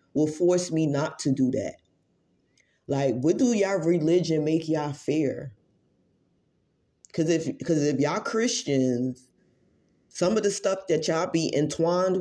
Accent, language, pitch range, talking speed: American, English, 140-190 Hz, 145 wpm